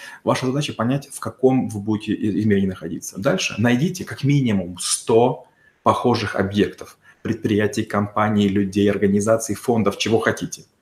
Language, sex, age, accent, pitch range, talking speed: Russian, male, 30-49, native, 100-125 Hz, 130 wpm